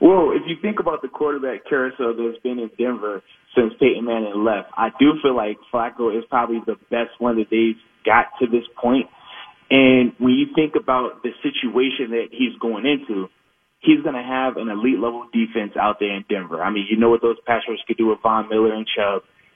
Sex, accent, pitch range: male, American, 115-145 Hz